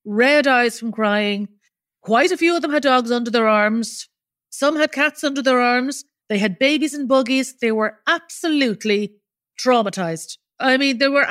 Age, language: 40-59, English